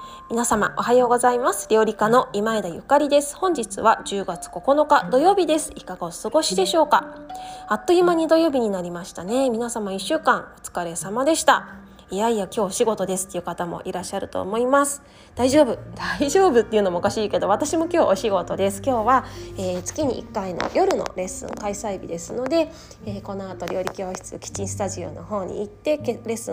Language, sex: Japanese, female